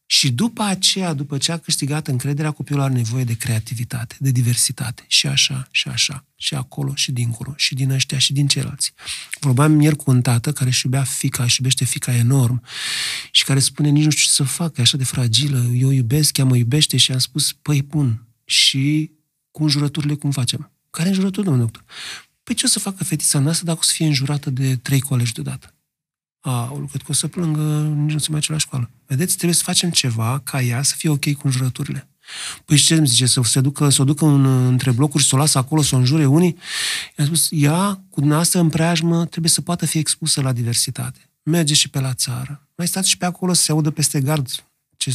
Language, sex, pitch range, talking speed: Romanian, male, 130-155 Hz, 220 wpm